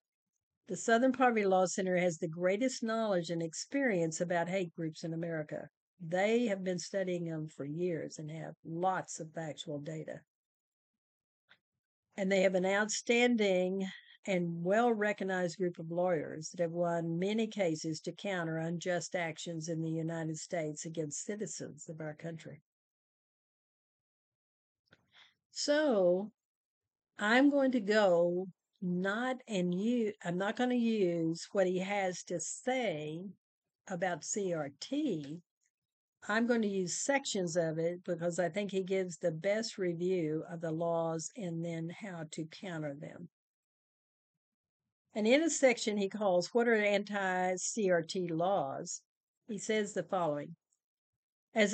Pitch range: 170-210 Hz